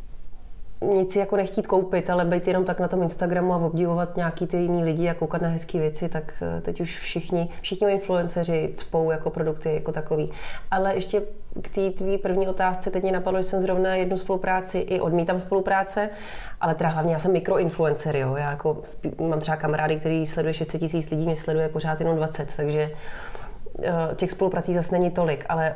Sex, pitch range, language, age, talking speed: female, 165-190 Hz, Slovak, 30-49, 185 wpm